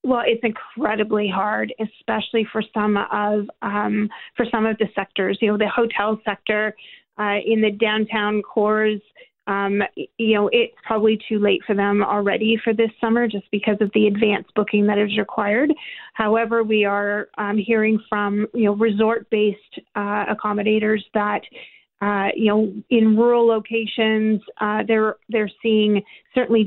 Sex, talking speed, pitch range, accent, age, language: female, 155 wpm, 210-240 Hz, American, 30-49, English